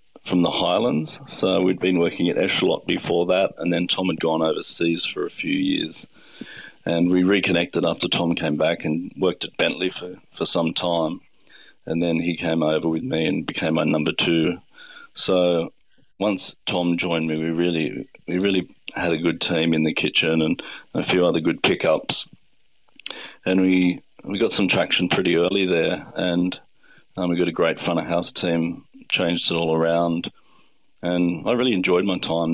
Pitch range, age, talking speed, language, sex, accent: 85-95 Hz, 40-59, 185 wpm, English, male, Australian